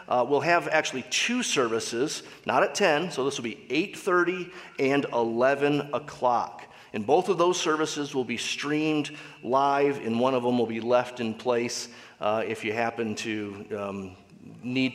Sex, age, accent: male, 30-49, American